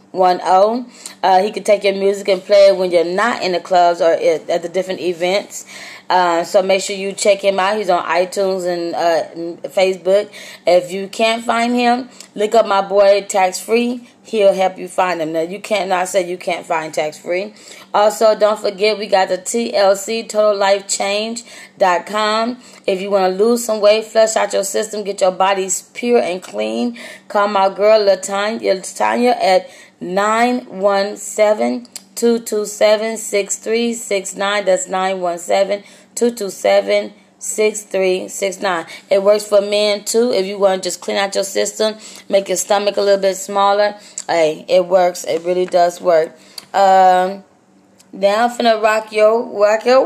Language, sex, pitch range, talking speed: English, female, 185-215 Hz, 165 wpm